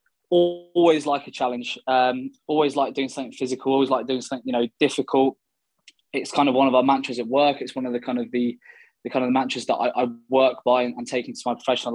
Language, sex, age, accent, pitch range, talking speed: English, male, 20-39, British, 125-145 Hz, 245 wpm